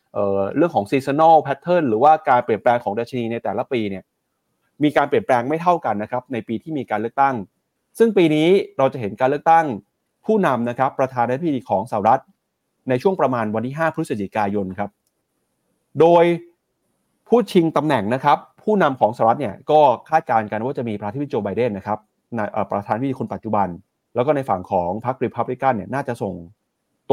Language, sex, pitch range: Thai, male, 105-145 Hz